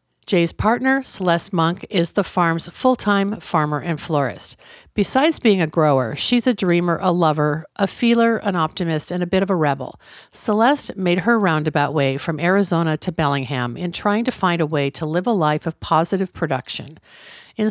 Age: 50-69